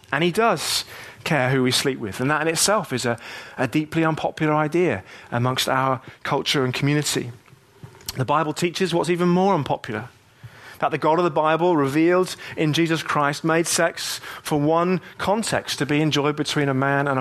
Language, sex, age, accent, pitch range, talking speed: English, male, 30-49, British, 135-180 Hz, 180 wpm